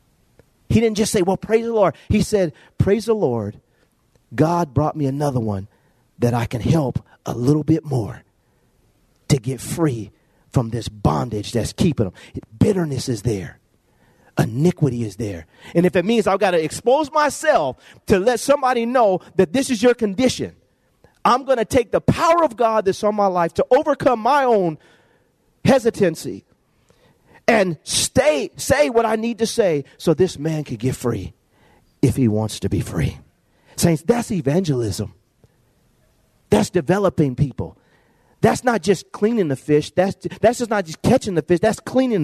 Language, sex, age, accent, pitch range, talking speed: English, male, 40-59, American, 140-225 Hz, 175 wpm